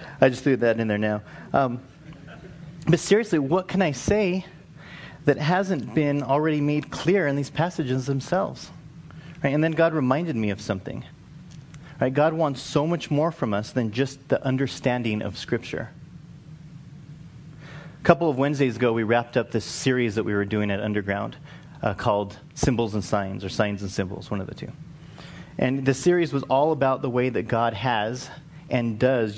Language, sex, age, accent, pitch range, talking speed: English, male, 30-49, American, 115-155 Hz, 180 wpm